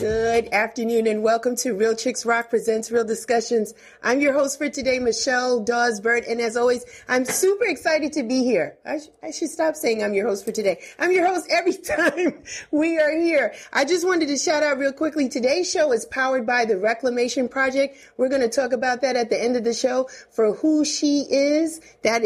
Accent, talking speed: American, 215 wpm